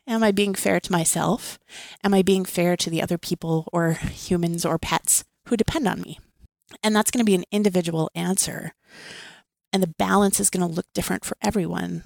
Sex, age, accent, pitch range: female, 30-49, American, 175-210 Hz